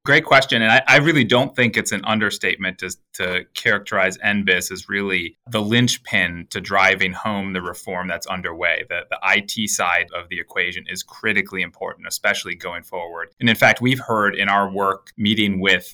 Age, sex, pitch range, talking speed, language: 30-49, male, 90-110 Hz, 185 wpm, English